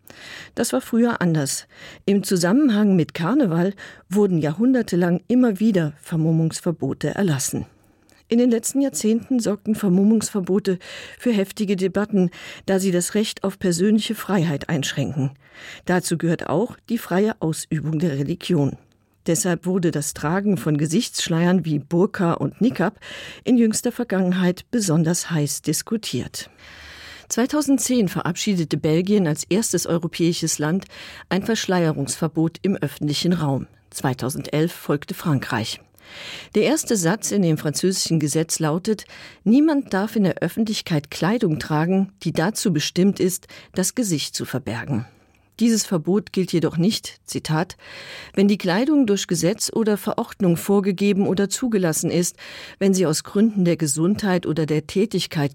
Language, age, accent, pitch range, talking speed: German, 50-69, German, 155-205 Hz, 130 wpm